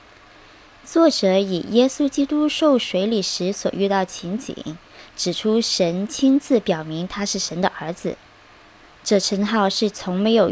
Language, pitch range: Chinese, 185-245 Hz